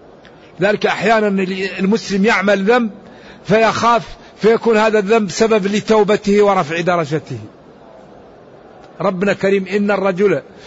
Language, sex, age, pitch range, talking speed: Arabic, male, 50-69, 180-220 Hz, 95 wpm